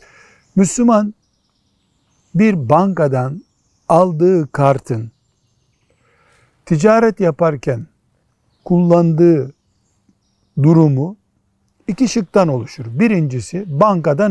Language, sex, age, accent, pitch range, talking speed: Turkish, male, 60-79, native, 125-200 Hz, 60 wpm